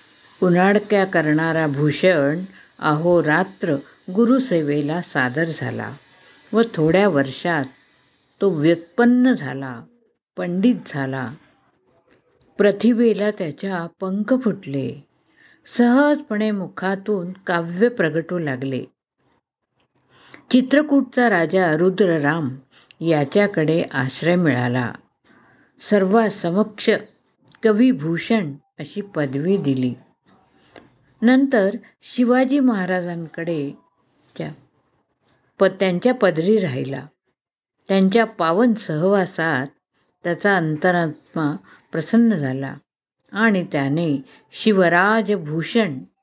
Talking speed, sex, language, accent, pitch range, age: 70 wpm, female, Marathi, native, 150-210 Hz, 50-69